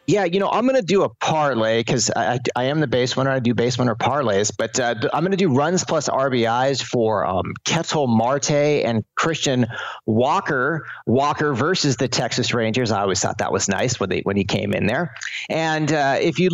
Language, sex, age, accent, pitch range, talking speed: English, male, 30-49, American, 115-150 Hz, 215 wpm